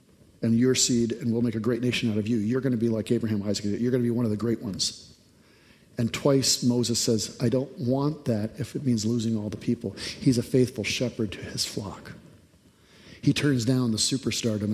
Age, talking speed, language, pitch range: 50-69, 225 wpm, English, 110-130 Hz